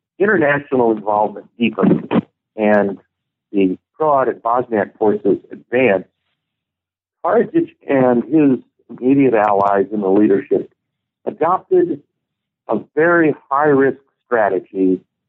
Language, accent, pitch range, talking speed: English, American, 105-130 Hz, 90 wpm